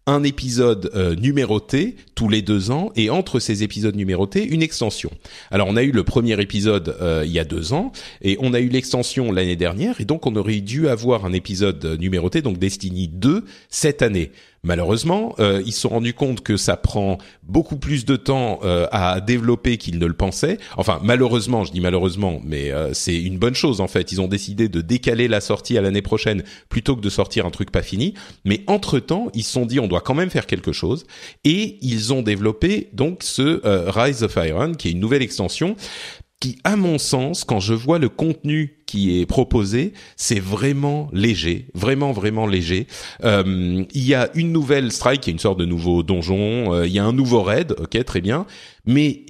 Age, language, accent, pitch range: 40-59, French, French, 95-125 Hz